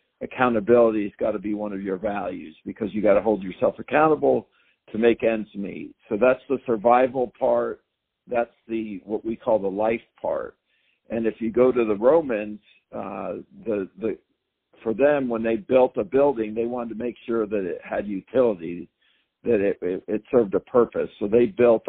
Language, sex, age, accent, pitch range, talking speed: English, male, 60-79, American, 110-125 Hz, 190 wpm